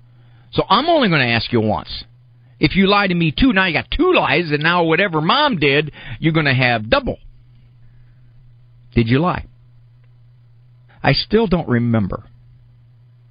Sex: male